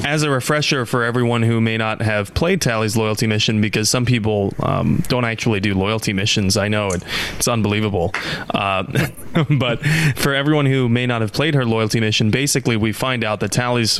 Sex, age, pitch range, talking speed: male, 20-39, 105-125 Hz, 195 wpm